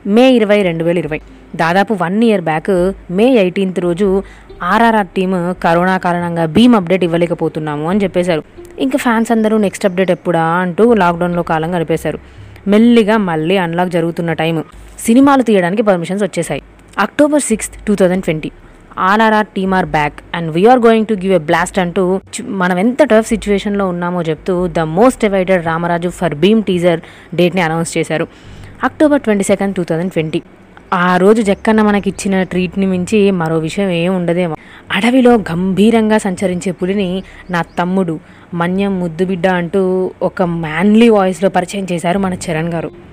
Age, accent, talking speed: 20-39, native, 150 wpm